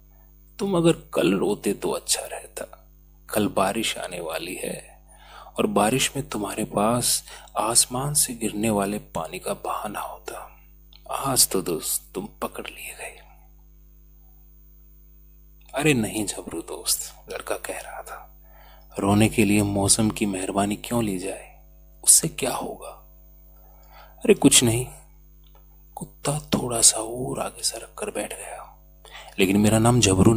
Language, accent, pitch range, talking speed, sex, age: Hindi, native, 95-150 Hz, 135 wpm, male, 30-49